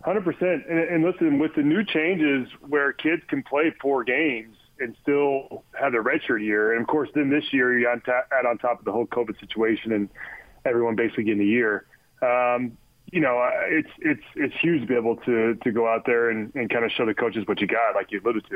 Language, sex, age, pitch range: English, male, 30-49, 125-165 Hz